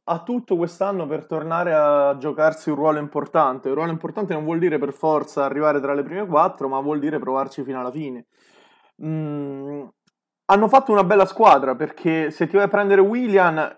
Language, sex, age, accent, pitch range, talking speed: Italian, male, 20-39, native, 140-180 Hz, 185 wpm